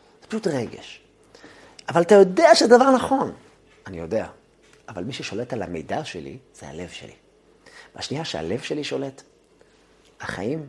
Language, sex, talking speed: Hebrew, male, 135 wpm